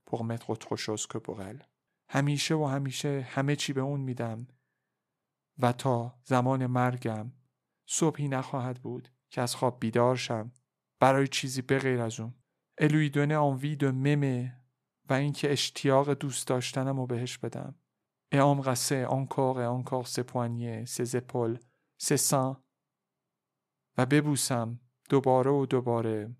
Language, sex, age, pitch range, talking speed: Persian, male, 40-59, 125-140 Hz, 125 wpm